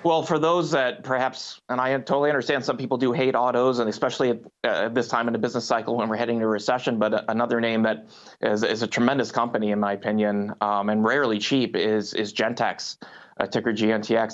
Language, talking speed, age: English, 220 wpm, 30-49